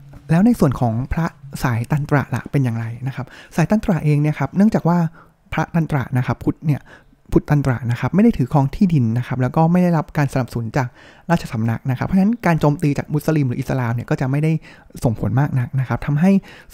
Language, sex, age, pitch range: Thai, male, 20-39, 125-160 Hz